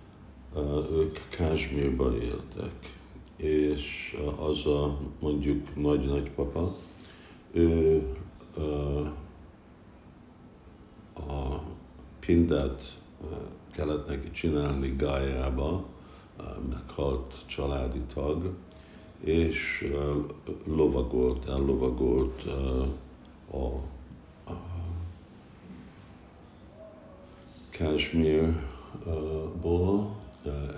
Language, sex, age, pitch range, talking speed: Hungarian, male, 60-79, 65-80 Hz, 45 wpm